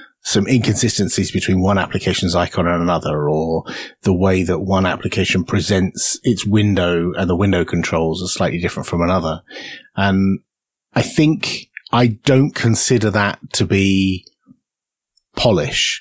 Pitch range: 95-115 Hz